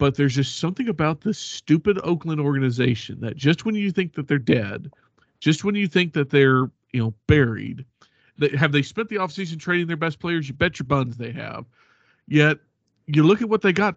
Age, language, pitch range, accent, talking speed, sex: 40-59, English, 135-190 Hz, American, 215 wpm, male